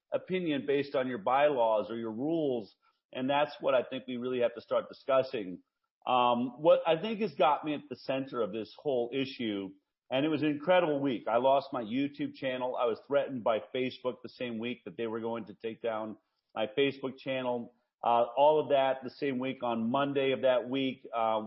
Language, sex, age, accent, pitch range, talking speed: English, male, 40-59, American, 120-145 Hz, 210 wpm